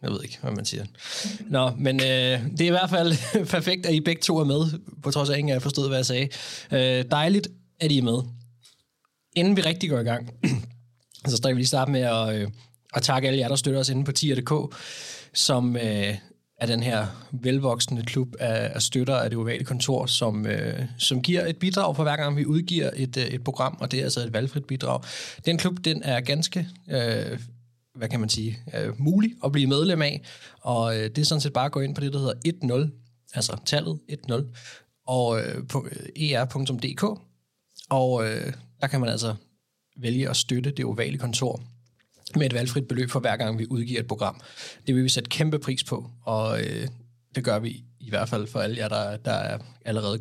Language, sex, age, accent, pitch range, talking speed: Danish, male, 20-39, native, 120-145 Hz, 215 wpm